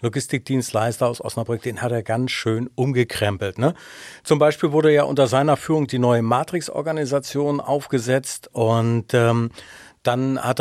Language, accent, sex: German, German, male